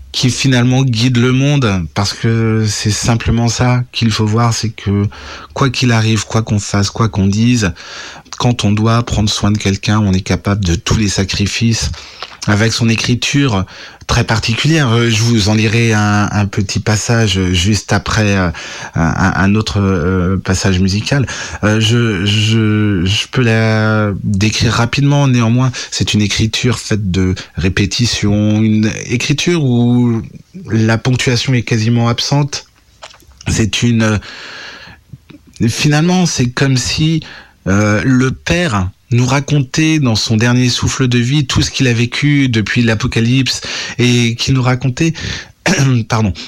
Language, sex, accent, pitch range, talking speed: French, male, French, 105-125 Hz, 145 wpm